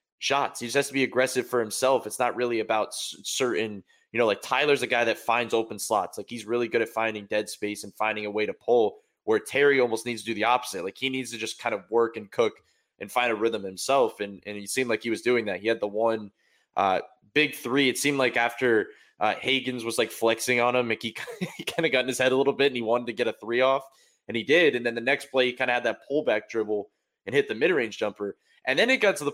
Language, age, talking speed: English, 20-39, 275 wpm